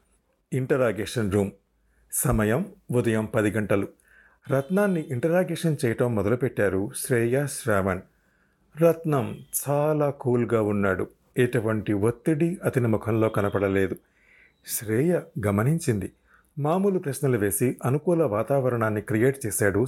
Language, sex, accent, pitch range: Telugu, male, native, 110-160 Hz